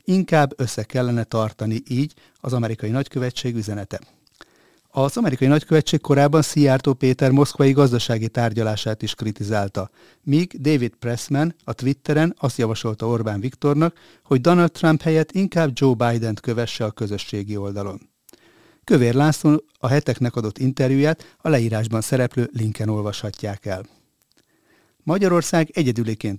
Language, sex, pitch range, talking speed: Hungarian, male, 115-145 Hz, 125 wpm